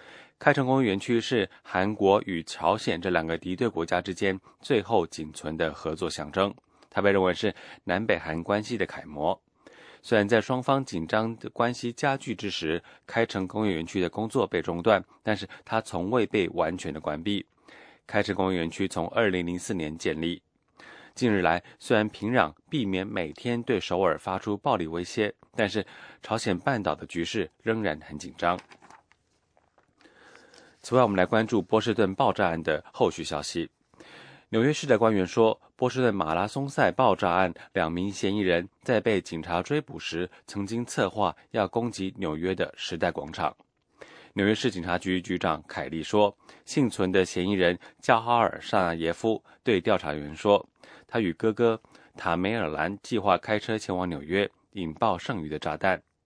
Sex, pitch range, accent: male, 85-110 Hz, Chinese